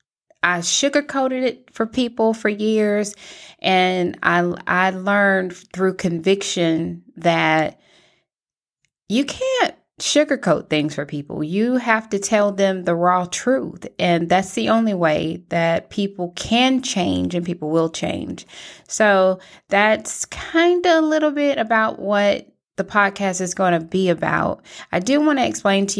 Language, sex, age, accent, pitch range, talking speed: English, female, 20-39, American, 170-215 Hz, 145 wpm